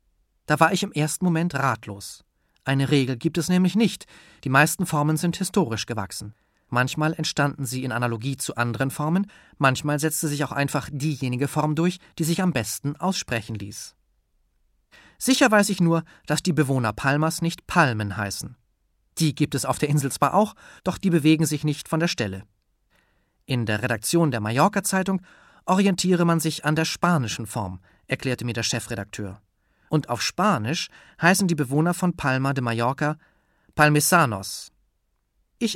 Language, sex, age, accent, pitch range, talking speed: German, male, 30-49, German, 115-165 Hz, 160 wpm